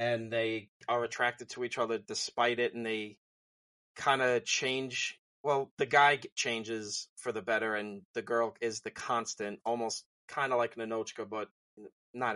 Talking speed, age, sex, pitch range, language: 170 wpm, 30-49, male, 110-125 Hz, English